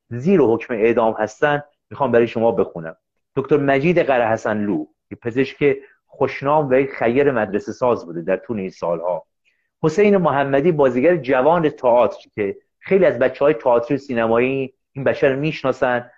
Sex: male